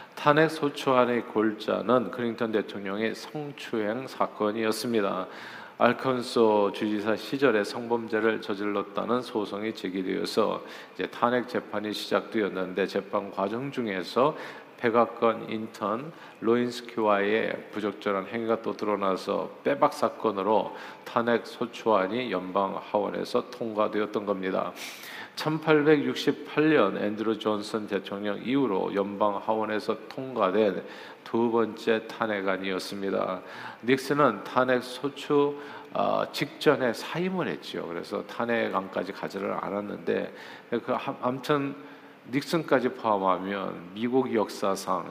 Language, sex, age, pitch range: Korean, male, 40-59, 100-125 Hz